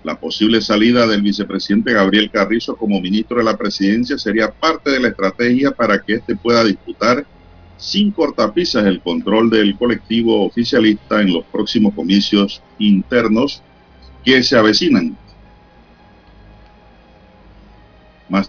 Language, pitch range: Spanish, 95-120 Hz